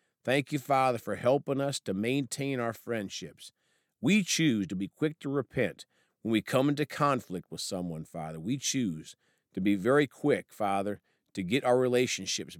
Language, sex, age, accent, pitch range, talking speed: English, male, 50-69, American, 95-130 Hz, 170 wpm